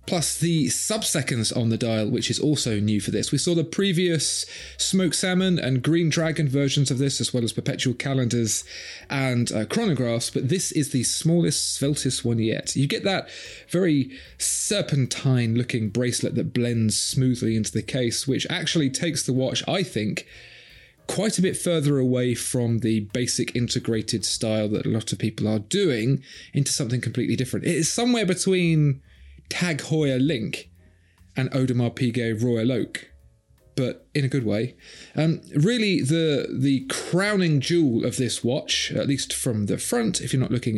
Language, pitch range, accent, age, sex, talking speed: English, 115-155 Hz, British, 30-49, male, 170 wpm